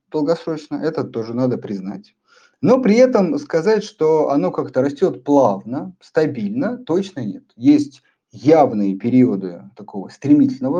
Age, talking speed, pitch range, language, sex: 50-69, 120 wpm, 120-200 Hz, Russian, male